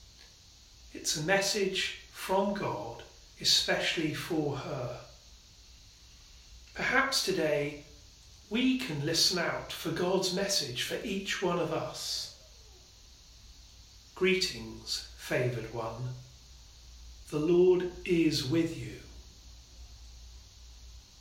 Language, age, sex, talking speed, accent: English, 40-59, male, 85 wpm, British